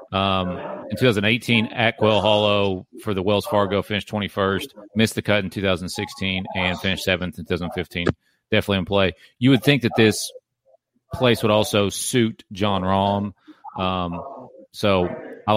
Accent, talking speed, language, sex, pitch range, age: American, 150 wpm, English, male, 95-105 Hz, 40-59